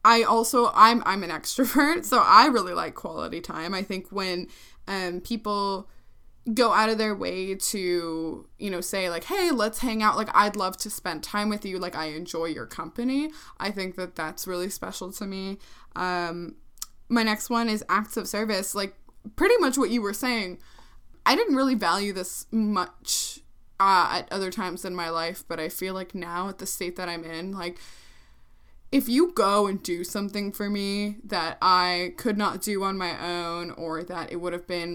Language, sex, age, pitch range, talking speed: English, female, 20-39, 180-220 Hz, 195 wpm